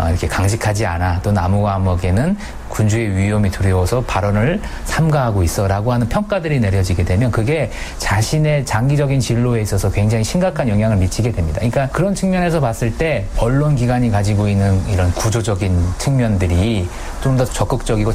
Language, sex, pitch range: Korean, male, 100-130 Hz